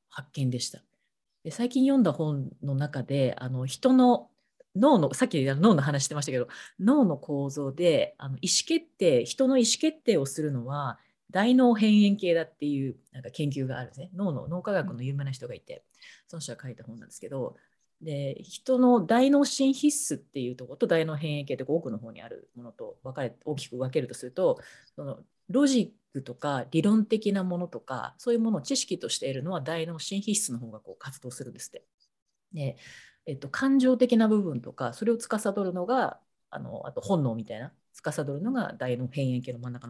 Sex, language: female, Japanese